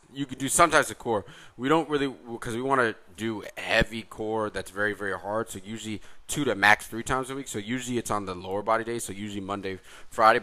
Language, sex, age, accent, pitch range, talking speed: English, male, 20-39, American, 95-115 Hz, 235 wpm